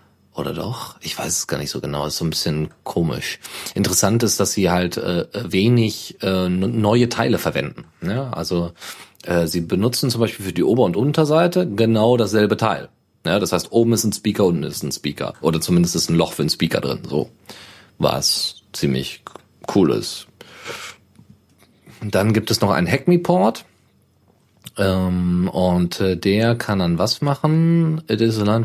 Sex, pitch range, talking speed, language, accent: male, 90-115 Hz, 175 wpm, German, German